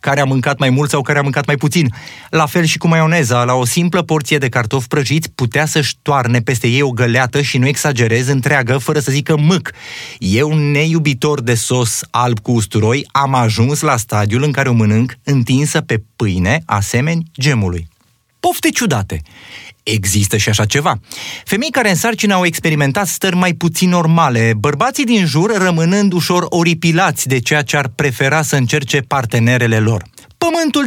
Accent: native